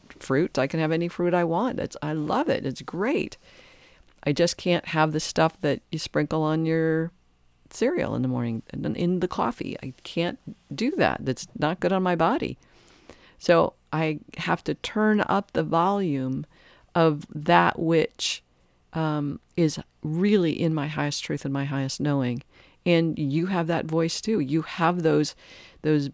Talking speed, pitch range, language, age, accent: 170 wpm, 135-165 Hz, English, 50-69, American